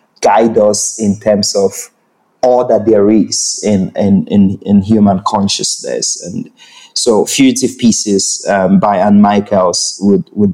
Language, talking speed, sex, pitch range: English, 140 wpm, male, 100-125 Hz